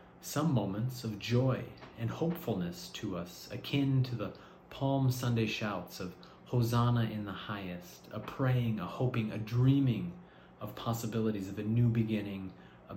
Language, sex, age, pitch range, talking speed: Hungarian, male, 30-49, 100-120 Hz, 150 wpm